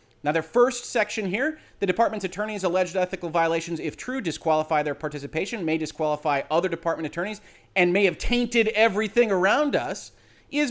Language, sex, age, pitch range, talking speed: English, male, 30-49, 145-210 Hz, 160 wpm